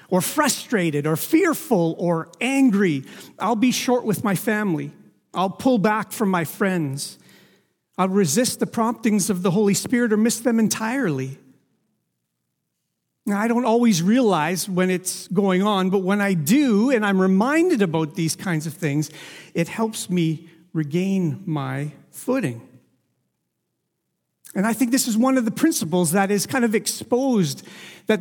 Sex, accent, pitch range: male, American, 170-225 Hz